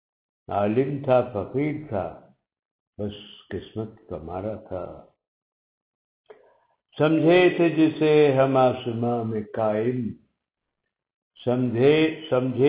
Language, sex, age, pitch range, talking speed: Urdu, male, 60-79, 110-145 Hz, 60 wpm